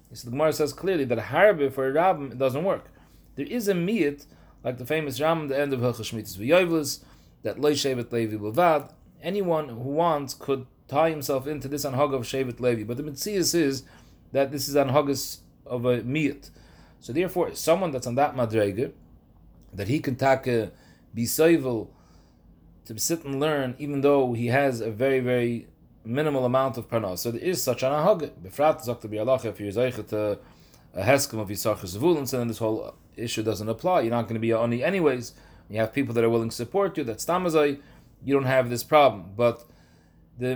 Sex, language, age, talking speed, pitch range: male, English, 30-49, 200 wpm, 115-150 Hz